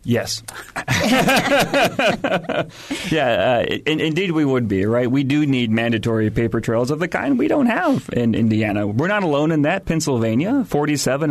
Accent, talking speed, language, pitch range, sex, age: American, 155 wpm, English, 120-155 Hz, male, 40-59